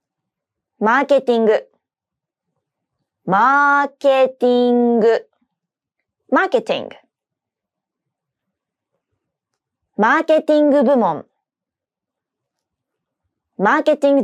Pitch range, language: 215-300 Hz, English